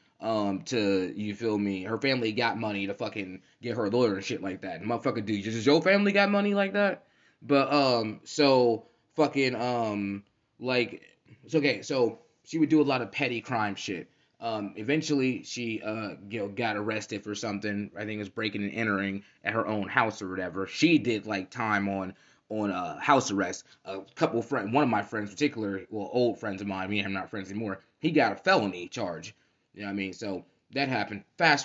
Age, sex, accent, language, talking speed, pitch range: 20-39, male, American, English, 210 wpm, 100-125 Hz